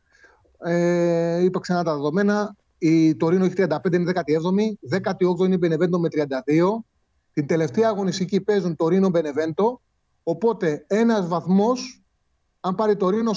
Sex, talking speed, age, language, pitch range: male, 145 wpm, 30-49, Greek, 155-190 Hz